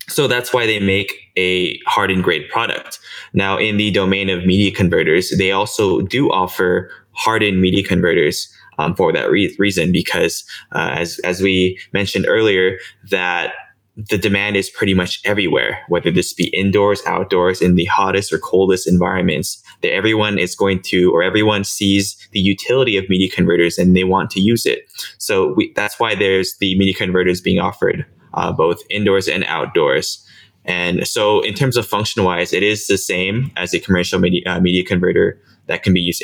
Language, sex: English, male